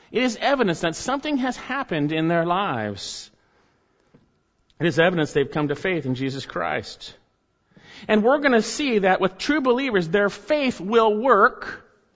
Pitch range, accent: 155-235 Hz, American